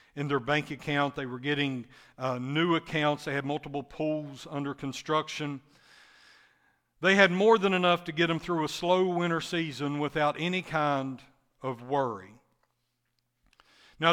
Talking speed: 150 wpm